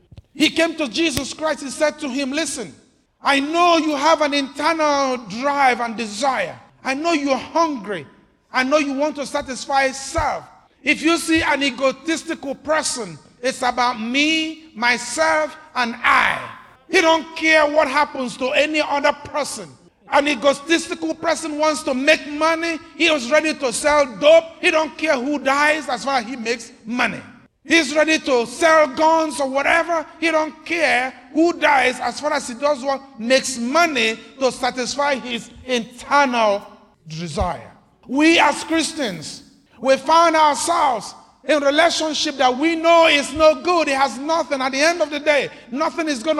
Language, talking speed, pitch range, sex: English, 165 wpm, 265-320 Hz, male